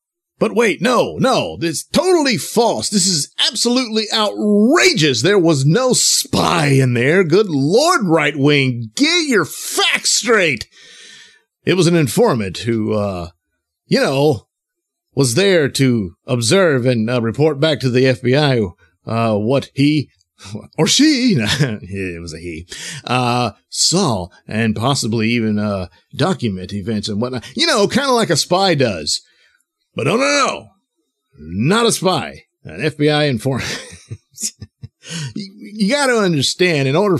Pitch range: 115-190 Hz